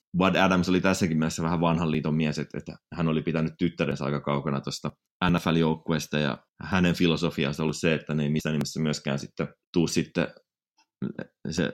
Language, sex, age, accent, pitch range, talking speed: Finnish, male, 30-49, native, 80-85 Hz, 170 wpm